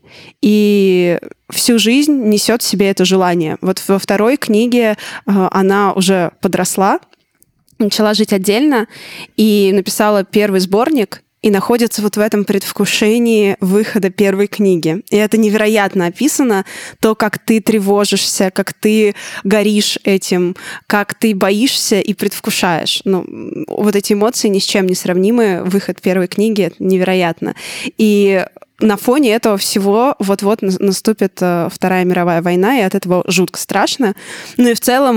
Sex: female